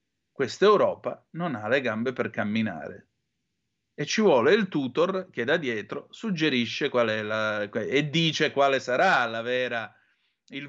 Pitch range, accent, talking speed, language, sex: 110-165 Hz, native, 150 wpm, Italian, male